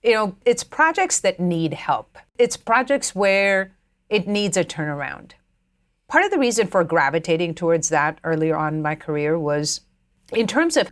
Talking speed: 170 wpm